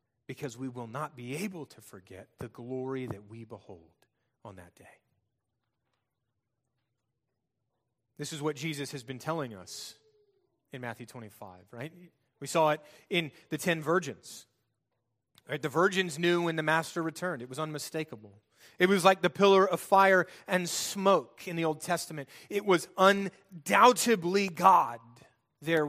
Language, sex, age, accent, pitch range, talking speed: English, male, 30-49, American, 120-165 Hz, 145 wpm